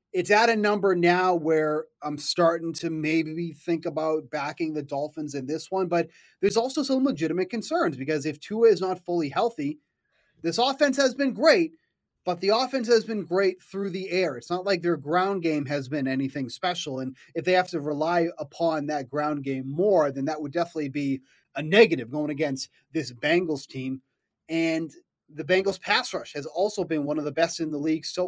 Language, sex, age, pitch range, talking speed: English, male, 30-49, 150-195 Hz, 200 wpm